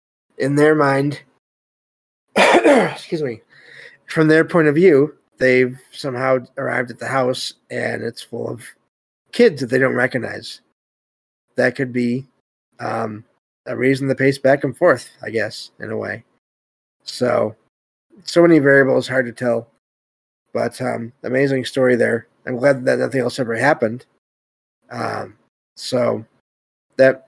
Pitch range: 120-150 Hz